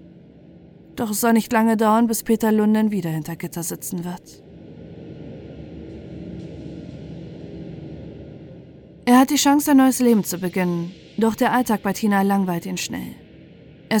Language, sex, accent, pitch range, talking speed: German, female, German, 180-230 Hz, 135 wpm